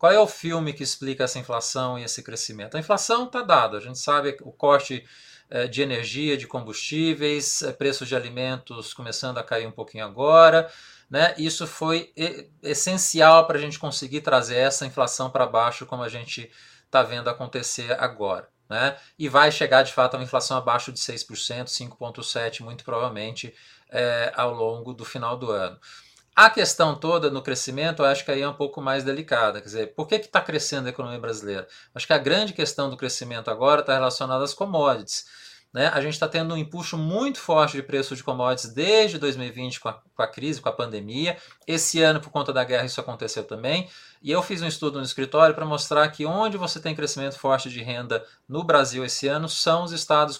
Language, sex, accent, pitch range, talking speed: Portuguese, male, Brazilian, 130-165 Hz, 200 wpm